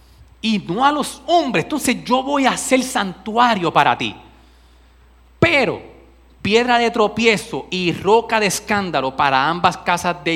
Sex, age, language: male, 30-49, Spanish